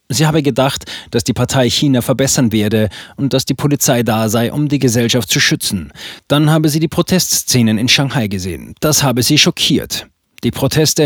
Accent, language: German, German